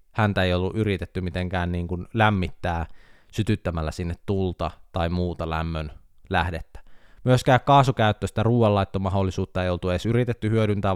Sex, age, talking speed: male, 20-39, 125 wpm